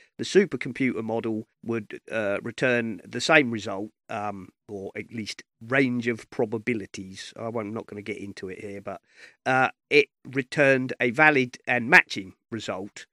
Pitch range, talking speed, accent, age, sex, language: 110-130 Hz, 160 wpm, British, 40-59, male, English